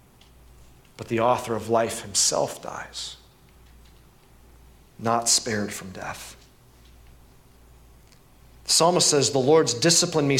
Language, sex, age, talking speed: English, male, 40-59, 105 wpm